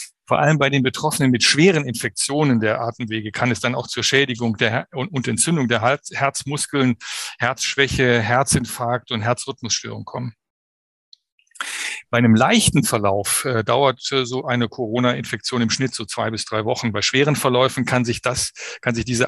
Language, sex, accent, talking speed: German, male, German, 145 wpm